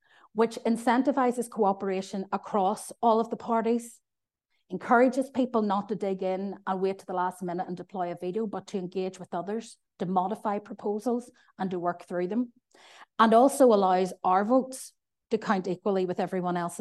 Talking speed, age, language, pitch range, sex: 170 wpm, 30-49, English, 180-215 Hz, female